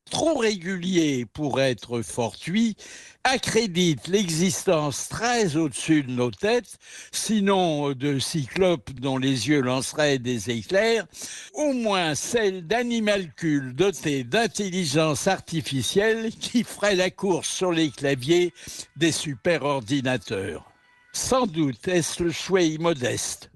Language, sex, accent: French, male, French